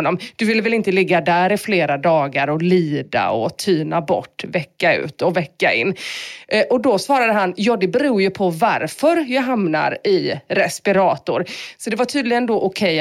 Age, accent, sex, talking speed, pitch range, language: 30-49, native, female, 180 wpm, 170-265 Hz, Swedish